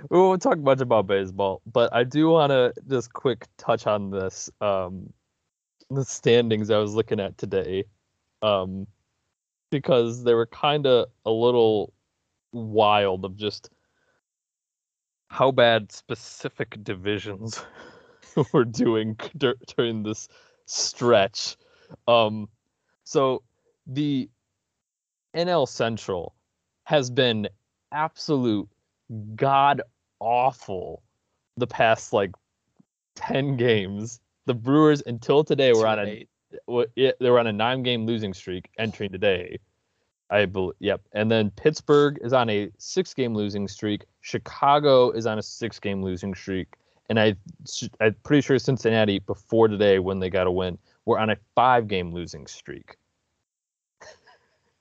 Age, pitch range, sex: 20-39, 100-130 Hz, male